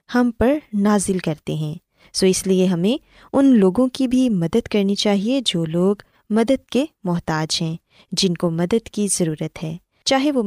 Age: 20-39